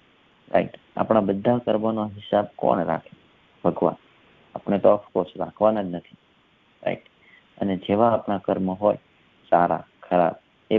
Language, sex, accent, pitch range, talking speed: English, male, Indian, 95-115 Hz, 140 wpm